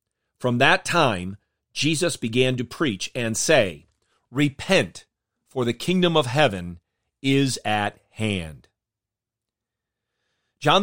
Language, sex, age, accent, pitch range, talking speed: English, male, 40-59, American, 115-165 Hz, 105 wpm